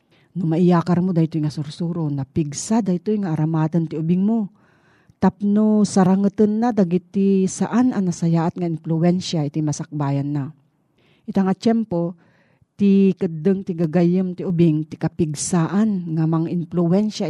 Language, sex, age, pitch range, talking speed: Filipino, female, 40-59, 155-195 Hz, 135 wpm